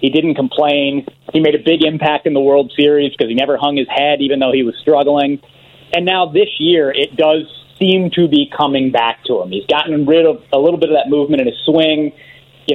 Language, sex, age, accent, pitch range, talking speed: English, male, 30-49, American, 135-160 Hz, 235 wpm